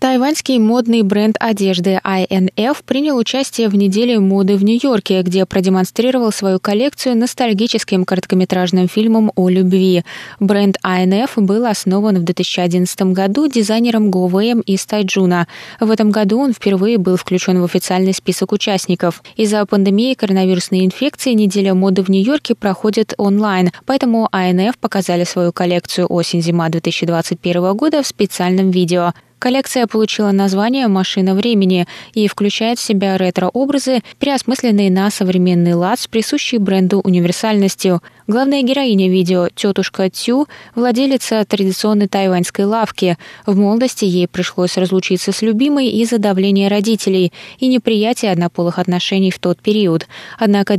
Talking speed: 130 wpm